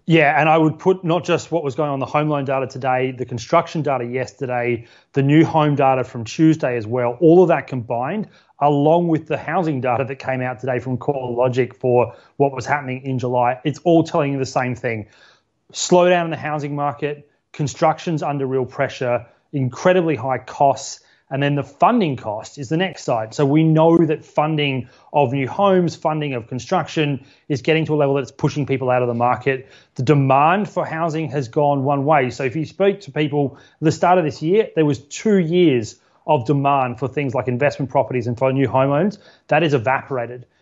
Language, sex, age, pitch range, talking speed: English, male, 30-49, 130-155 Hz, 205 wpm